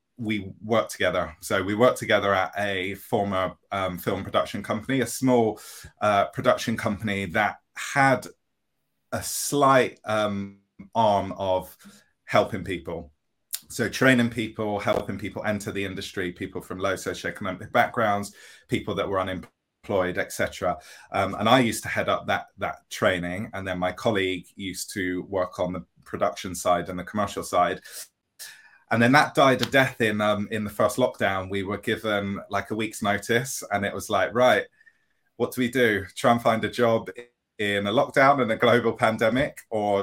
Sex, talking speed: male, 170 wpm